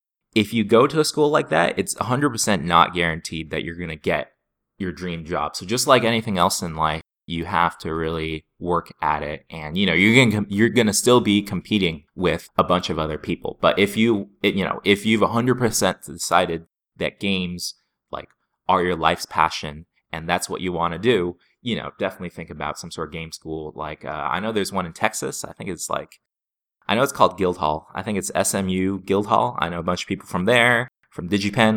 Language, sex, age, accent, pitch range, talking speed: English, male, 20-39, American, 80-110 Hz, 220 wpm